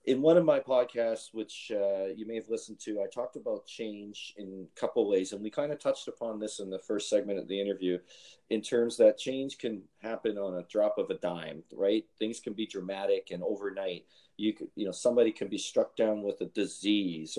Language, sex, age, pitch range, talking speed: English, male, 40-59, 95-120 Hz, 225 wpm